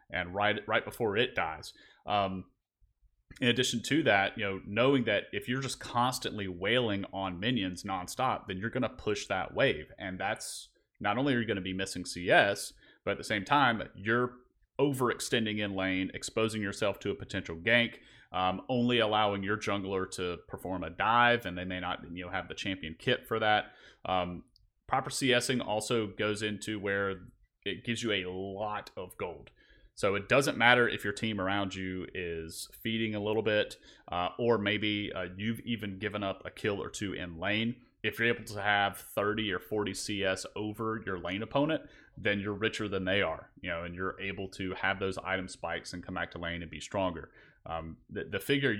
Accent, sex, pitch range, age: American, male, 95-110 Hz, 30-49